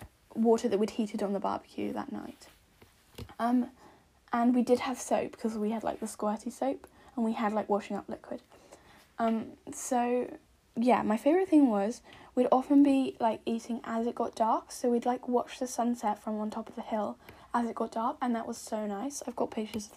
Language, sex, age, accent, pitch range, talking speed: English, female, 10-29, British, 210-250 Hz, 210 wpm